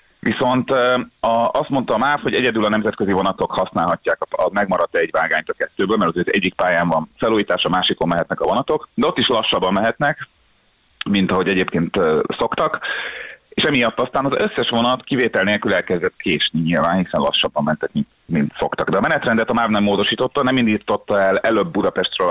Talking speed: 170 wpm